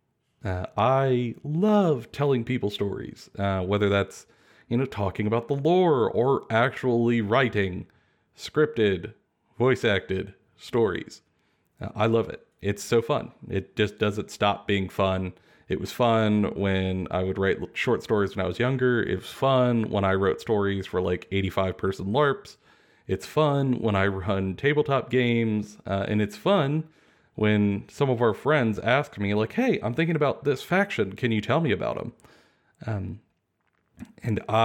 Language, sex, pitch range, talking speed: English, male, 100-130 Hz, 160 wpm